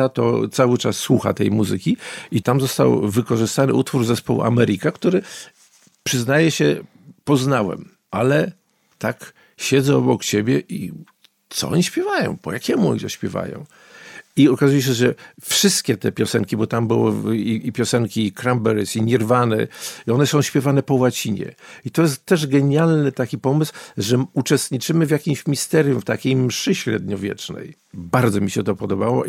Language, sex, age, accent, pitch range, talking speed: Polish, male, 50-69, native, 110-135 Hz, 150 wpm